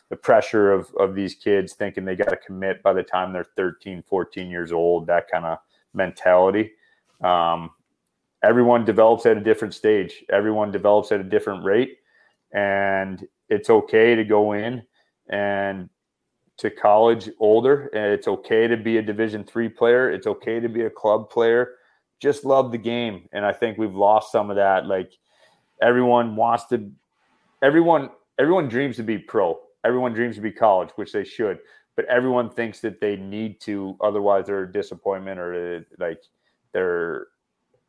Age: 30-49